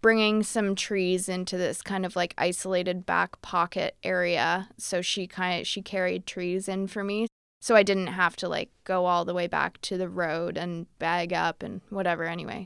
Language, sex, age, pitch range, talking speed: English, female, 20-39, 185-215 Hz, 200 wpm